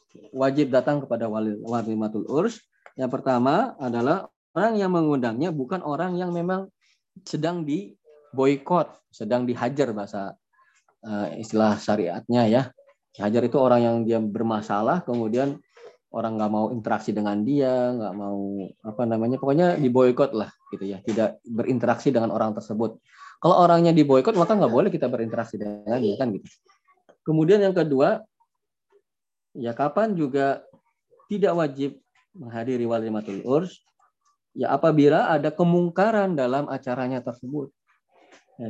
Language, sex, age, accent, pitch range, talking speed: Indonesian, male, 20-39, native, 115-175 Hz, 135 wpm